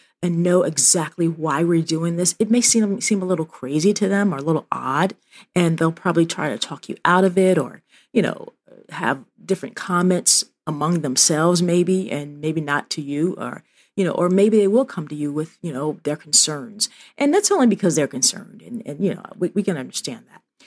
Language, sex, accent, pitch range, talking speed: English, female, American, 155-200 Hz, 215 wpm